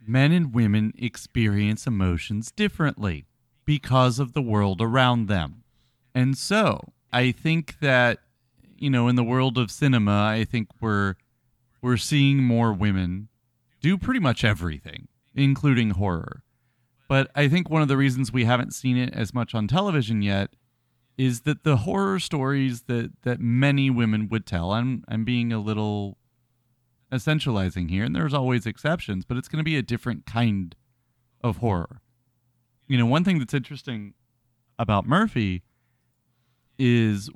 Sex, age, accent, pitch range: male, 30-49, American, 110-135 Hz